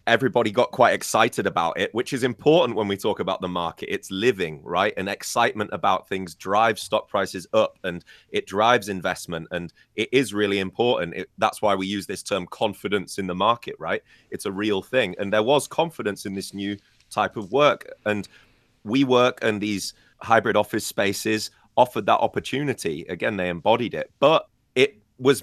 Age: 30-49